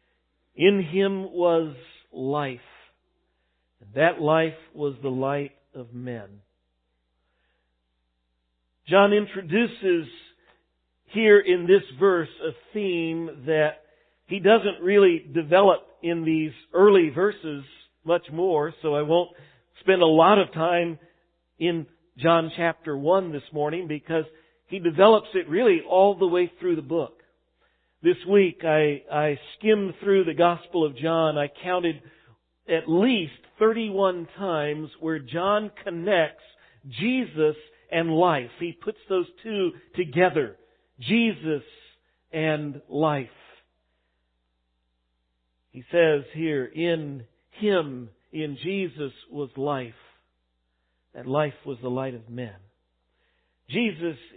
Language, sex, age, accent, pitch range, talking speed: English, male, 50-69, American, 130-180 Hz, 115 wpm